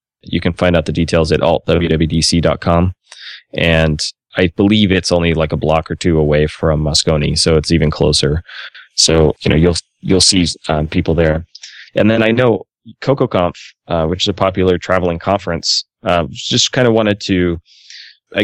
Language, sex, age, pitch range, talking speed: English, male, 20-39, 80-95 Hz, 175 wpm